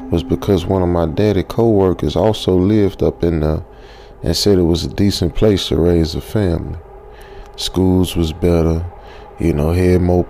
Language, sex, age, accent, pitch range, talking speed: English, male, 20-39, American, 85-100 Hz, 175 wpm